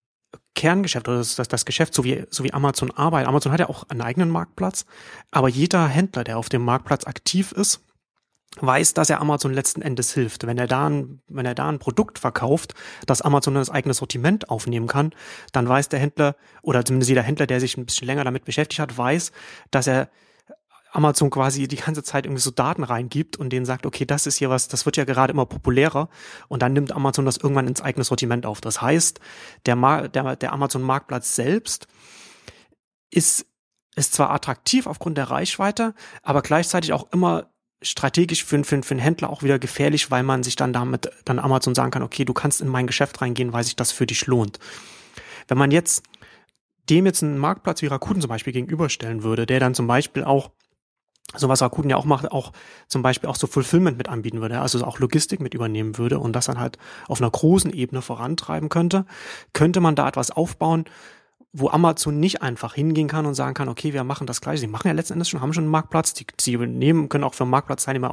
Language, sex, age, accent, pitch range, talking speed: German, male, 30-49, German, 130-155 Hz, 205 wpm